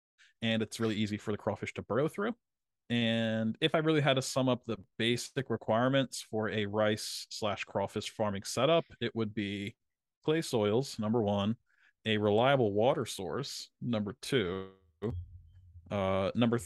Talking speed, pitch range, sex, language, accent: 155 wpm, 105-125 Hz, male, English, American